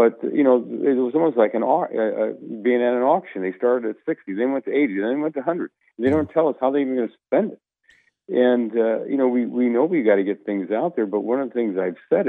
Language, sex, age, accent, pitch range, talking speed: English, male, 50-69, American, 105-130 Hz, 285 wpm